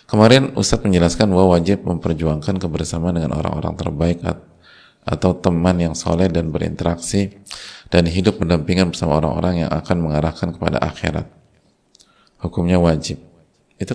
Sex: male